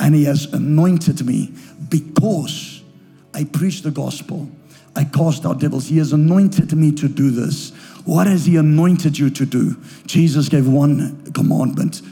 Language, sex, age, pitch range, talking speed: English, male, 60-79, 145-165 Hz, 160 wpm